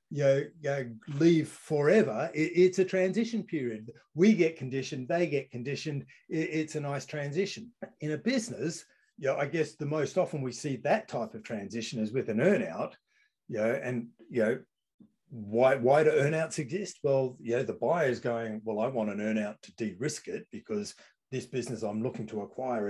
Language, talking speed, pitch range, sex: English, 195 wpm, 115-160 Hz, male